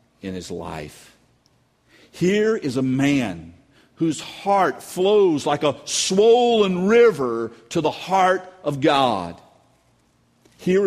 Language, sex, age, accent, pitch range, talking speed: English, male, 50-69, American, 120-180 Hz, 110 wpm